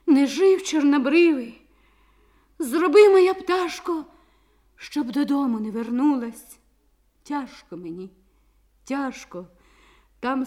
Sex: female